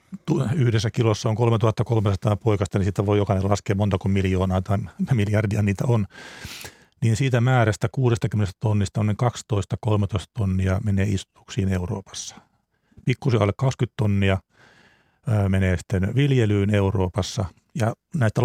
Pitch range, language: 100-120 Hz, Finnish